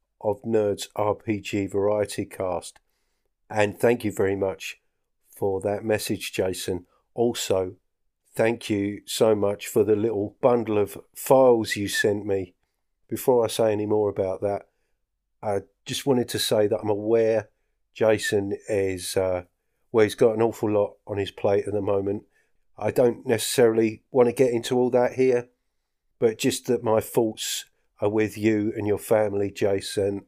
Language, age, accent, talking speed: English, 40-59, British, 160 wpm